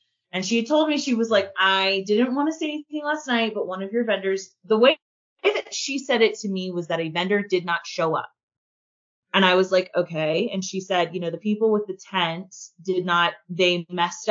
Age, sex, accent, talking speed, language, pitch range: 20-39, female, American, 230 wpm, English, 170-210 Hz